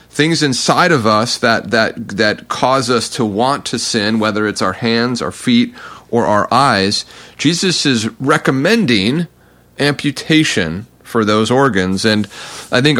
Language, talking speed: English, 150 wpm